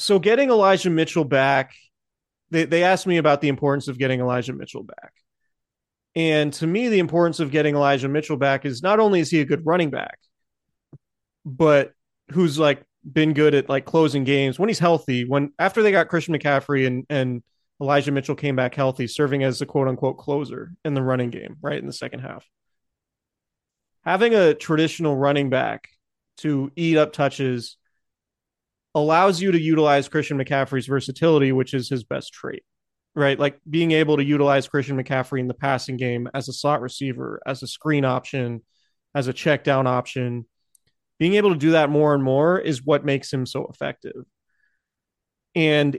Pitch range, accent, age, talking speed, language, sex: 135-160 Hz, American, 30-49, 180 wpm, English, male